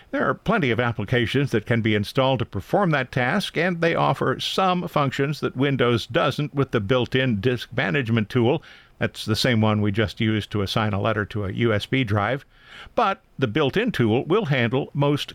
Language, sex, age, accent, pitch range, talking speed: English, male, 50-69, American, 115-140 Hz, 190 wpm